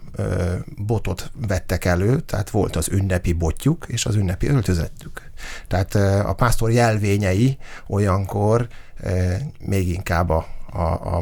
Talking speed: 110 wpm